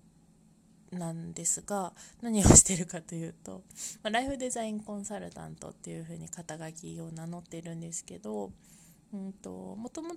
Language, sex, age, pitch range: Japanese, female, 20-39, 175-215 Hz